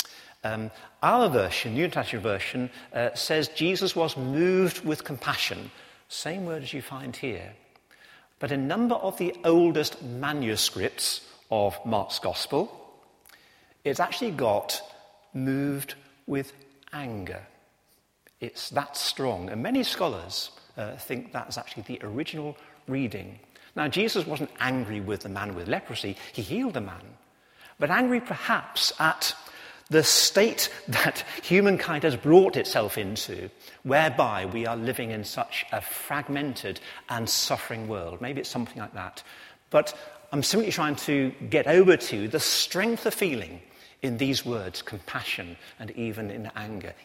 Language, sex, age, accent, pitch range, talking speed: English, male, 50-69, British, 110-150 Hz, 140 wpm